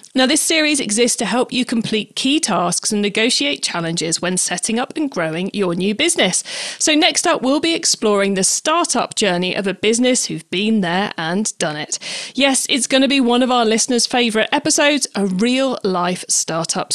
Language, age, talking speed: English, 40-59, 190 wpm